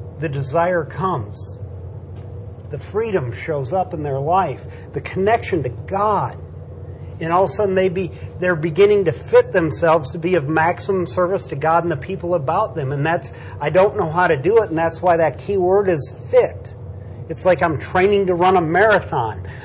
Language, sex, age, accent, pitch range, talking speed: English, male, 50-69, American, 120-175 Hz, 190 wpm